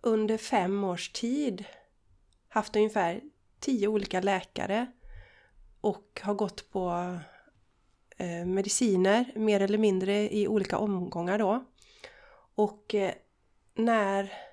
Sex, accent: female, native